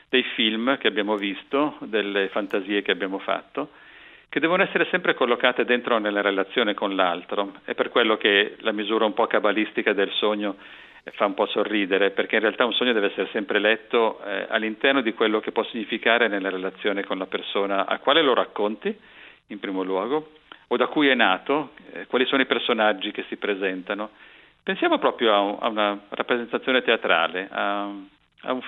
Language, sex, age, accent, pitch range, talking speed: Italian, male, 50-69, native, 95-125 Hz, 180 wpm